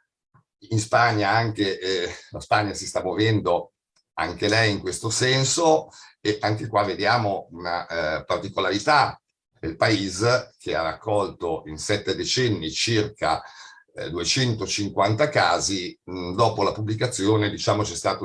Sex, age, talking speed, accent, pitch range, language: male, 50-69, 130 wpm, native, 100-125 Hz, Italian